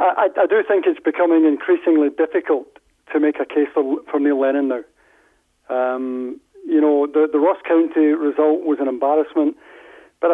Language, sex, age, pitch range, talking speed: English, male, 40-59, 150-215 Hz, 170 wpm